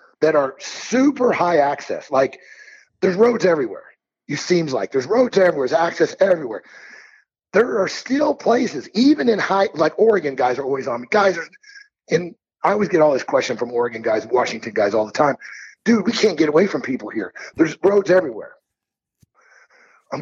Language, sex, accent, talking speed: English, male, American, 180 wpm